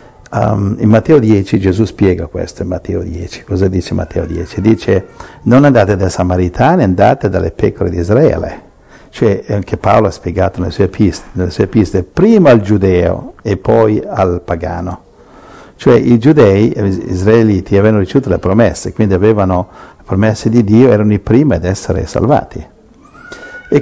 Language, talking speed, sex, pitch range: Italian, 155 wpm, male, 95-115 Hz